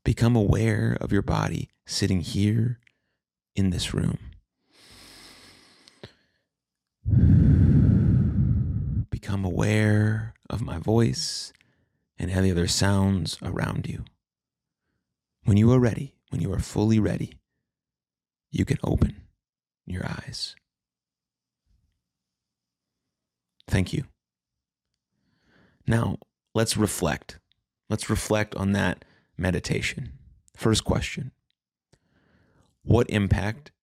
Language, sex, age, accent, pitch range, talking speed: English, male, 30-49, American, 90-110 Hz, 85 wpm